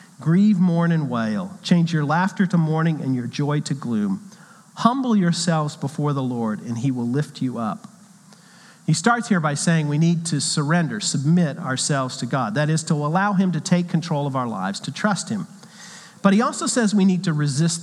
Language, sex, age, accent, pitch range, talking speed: English, male, 50-69, American, 155-200 Hz, 200 wpm